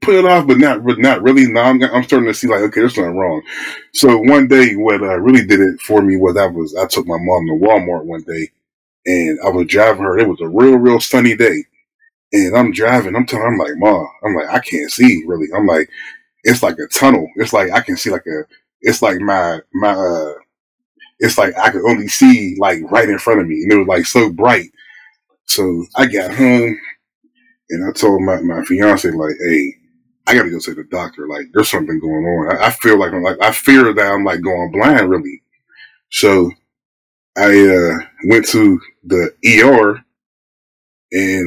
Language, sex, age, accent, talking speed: English, male, 20-39, American, 215 wpm